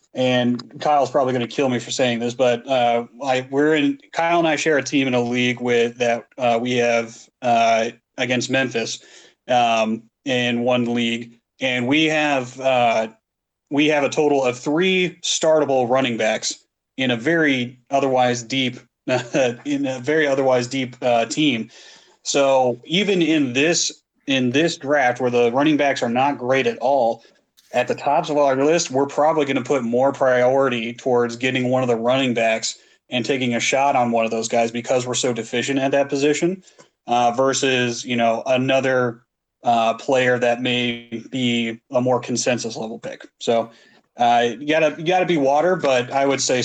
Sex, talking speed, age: male, 180 wpm, 30-49